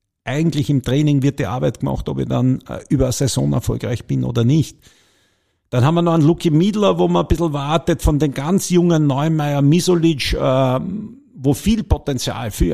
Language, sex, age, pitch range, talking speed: German, male, 50-69, 105-140 Hz, 195 wpm